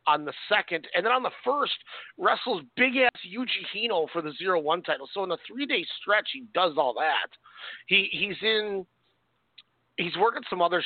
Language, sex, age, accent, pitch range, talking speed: English, male, 40-59, American, 160-250 Hz, 195 wpm